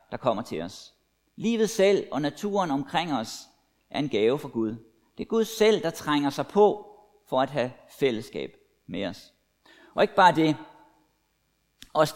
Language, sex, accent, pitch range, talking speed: Danish, male, native, 135-195 Hz, 170 wpm